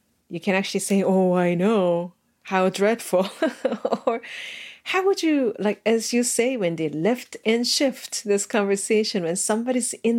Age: 40-59